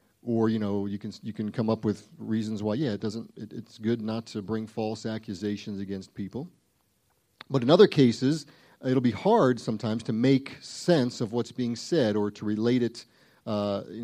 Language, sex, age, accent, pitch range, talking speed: English, male, 40-59, American, 105-125 Hz, 195 wpm